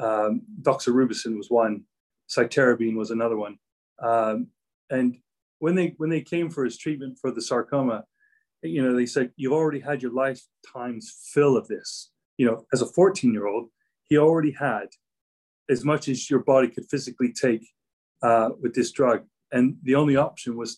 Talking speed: 175 wpm